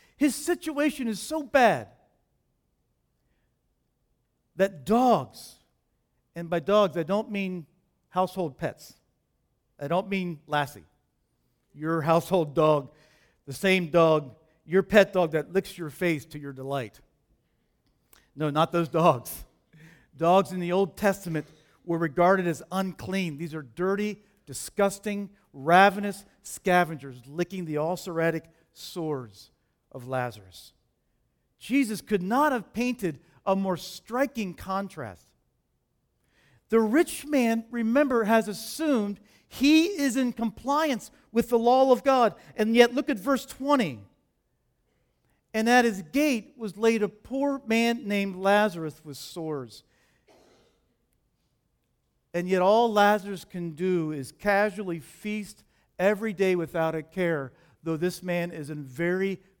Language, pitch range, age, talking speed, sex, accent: English, 160-220 Hz, 50-69, 125 wpm, male, American